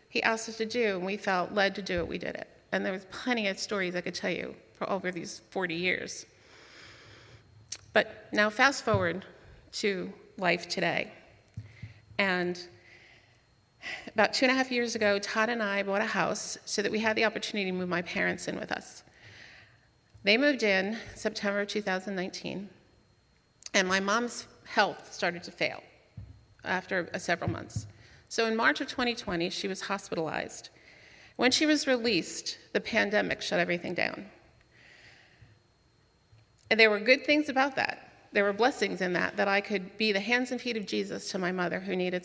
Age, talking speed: 40-59, 175 wpm